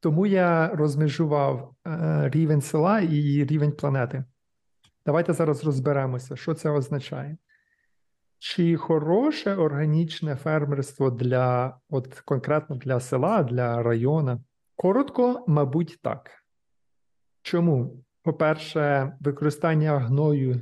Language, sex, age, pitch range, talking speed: Ukrainian, male, 40-59, 125-150 Hz, 95 wpm